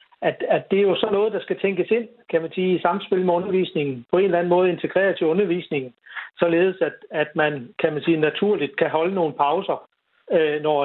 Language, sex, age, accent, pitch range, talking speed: Danish, male, 60-79, native, 150-190 Hz, 215 wpm